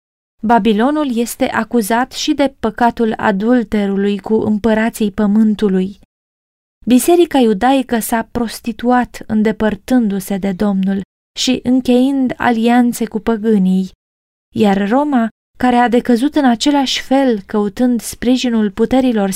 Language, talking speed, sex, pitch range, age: Romanian, 100 wpm, female, 215-255 Hz, 20-39